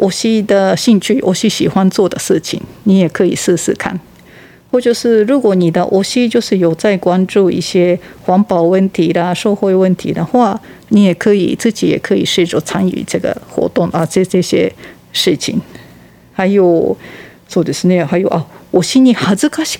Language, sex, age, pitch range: Japanese, female, 50-69, 180-220 Hz